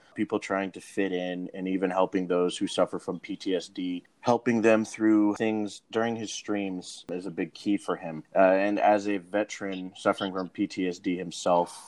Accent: American